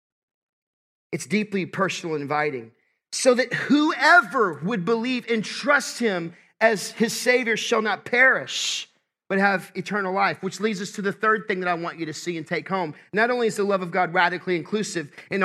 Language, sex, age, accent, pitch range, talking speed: English, male, 40-59, American, 155-220 Hz, 185 wpm